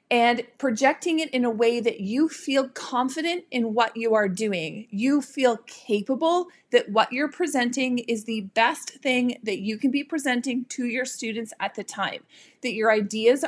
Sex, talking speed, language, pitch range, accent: female, 180 wpm, English, 220-275 Hz, American